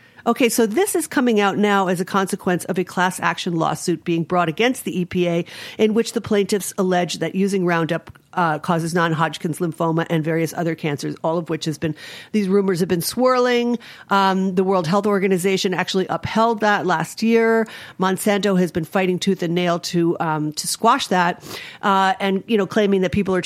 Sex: female